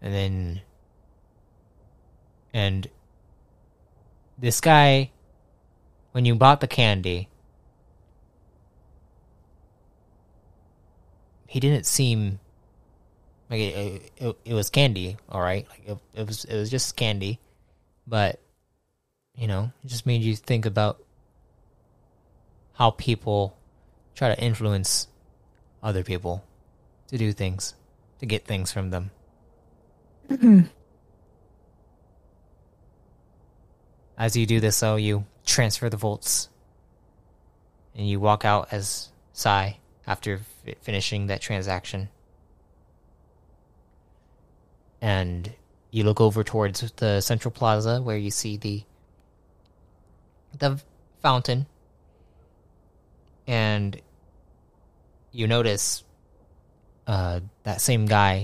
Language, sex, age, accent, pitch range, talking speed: English, male, 20-39, American, 90-115 Hz, 95 wpm